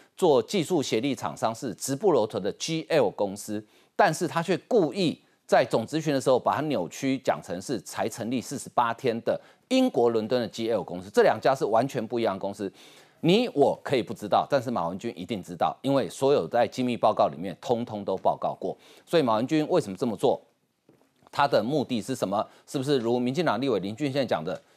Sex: male